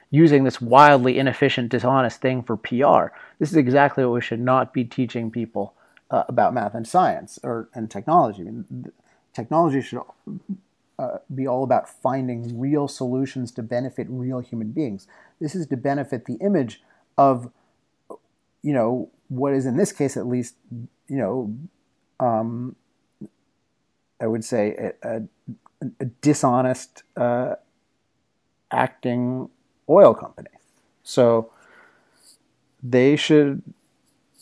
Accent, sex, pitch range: American, male, 120-145 Hz